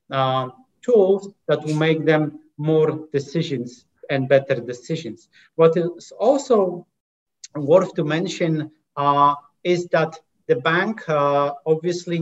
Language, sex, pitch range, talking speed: English, male, 145-170 Hz, 120 wpm